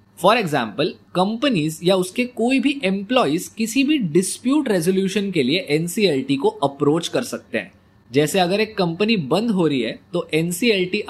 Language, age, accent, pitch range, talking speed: Hindi, 20-39, native, 145-215 Hz, 160 wpm